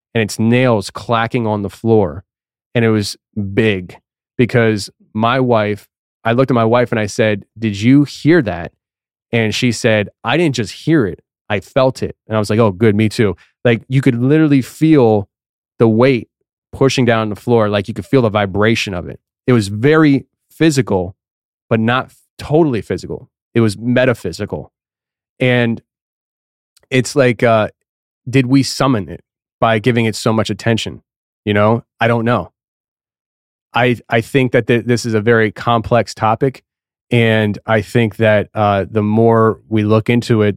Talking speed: 170 wpm